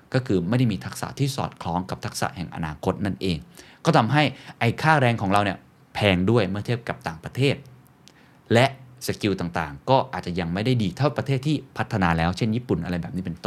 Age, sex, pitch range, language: 20-39, male, 95-130 Hz, Thai